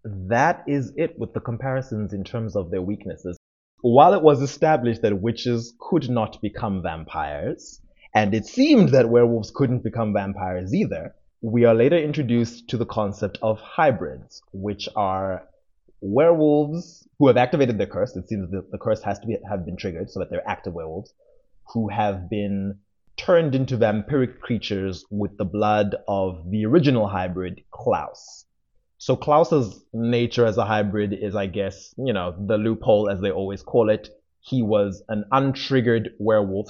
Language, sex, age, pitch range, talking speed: English, male, 20-39, 95-120 Hz, 165 wpm